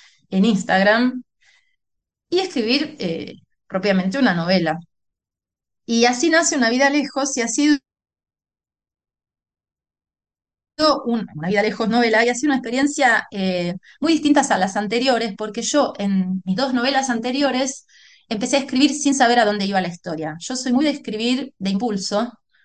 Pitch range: 195-265 Hz